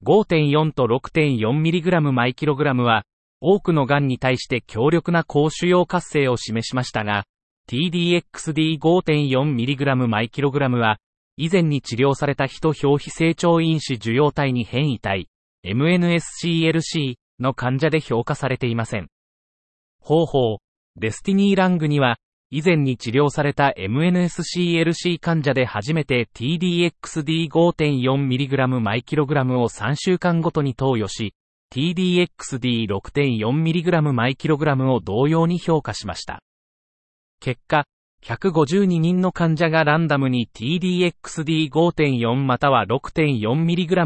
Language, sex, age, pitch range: Japanese, male, 30-49, 125-165 Hz